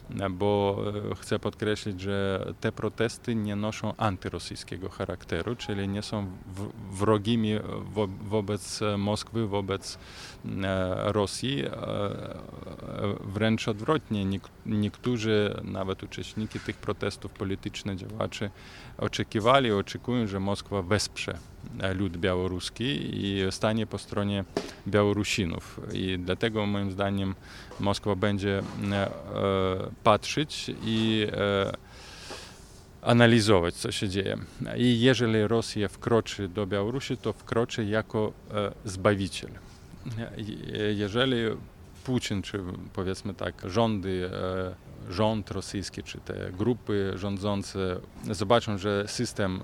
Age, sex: 20-39, male